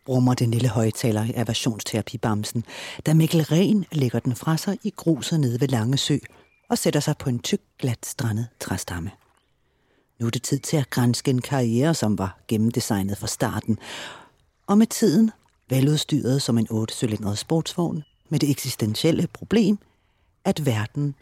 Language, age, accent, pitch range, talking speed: Danish, 40-59, native, 110-155 Hz, 155 wpm